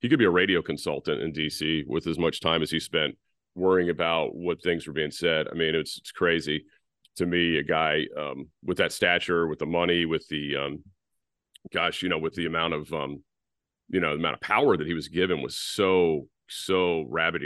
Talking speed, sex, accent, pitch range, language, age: 215 wpm, male, American, 80-90 Hz, English, 40-59